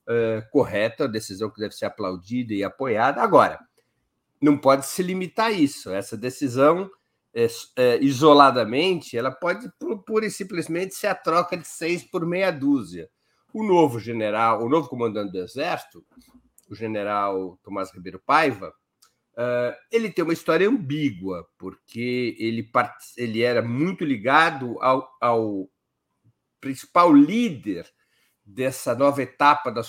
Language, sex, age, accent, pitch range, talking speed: Portuguese, male, 50-69, Brazilian, 115-155 Hz, 135 wpm